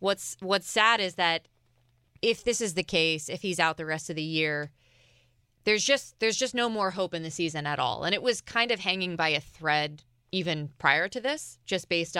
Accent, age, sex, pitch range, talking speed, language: American, 20-39, female, 155-195 Hz, 220 wpm, English